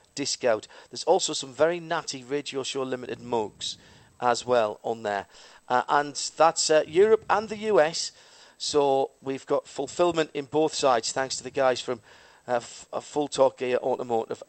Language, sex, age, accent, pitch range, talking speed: English, male, 40-59, British, 125-160 Hz, 170 wpm